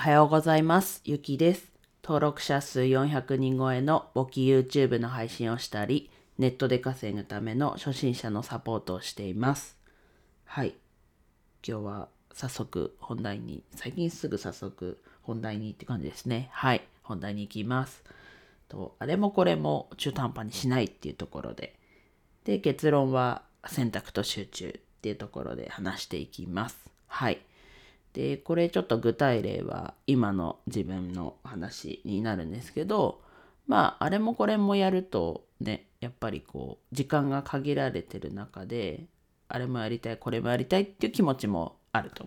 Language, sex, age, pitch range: Japanese, female, 40-59, 105-145 Hz